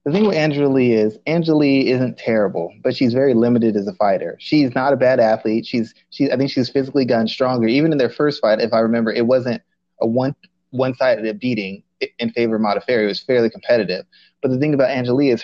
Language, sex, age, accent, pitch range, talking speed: English, male, 20-39, American, 115-140 Hz, 225 wpm